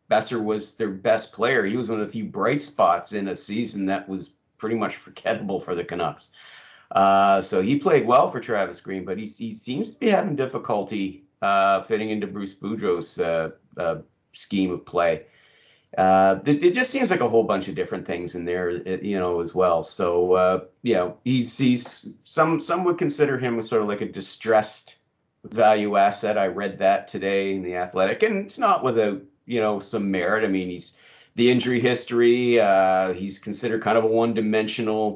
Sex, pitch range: male, 95-120 Hz